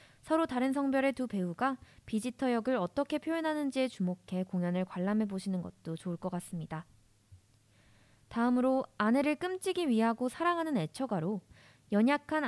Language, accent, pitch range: Korean, native, 175-270 Hz